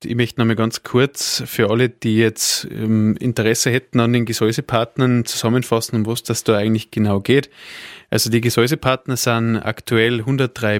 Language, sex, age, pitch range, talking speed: German, male, 20-39, 110-125 Hz, 160 wpm